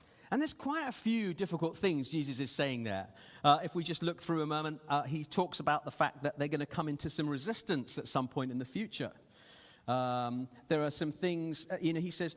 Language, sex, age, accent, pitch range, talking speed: English, male, 40-59, British, 140-180 Hz, 240 wpm